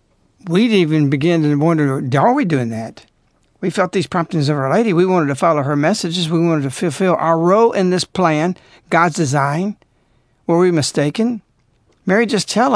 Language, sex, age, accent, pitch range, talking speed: English, male, 60-79, American, 145-205 Hz, 190 wpm